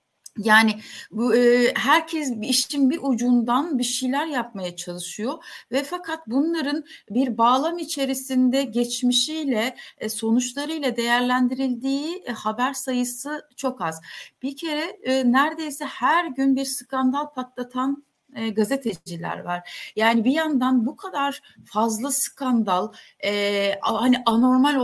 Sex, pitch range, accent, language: female, 230-275 Hz, native, Turkish